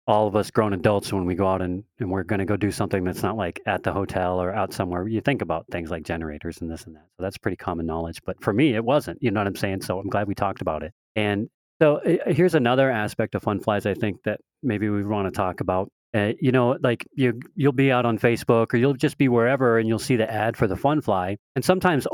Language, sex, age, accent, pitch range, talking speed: English, male, 40-59, American, 95-120 Hz, 275 wpm